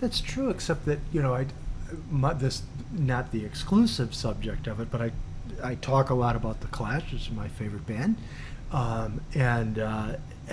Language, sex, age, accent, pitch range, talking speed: English, male, 40-59, American, 110-140 Hz, 180 wpm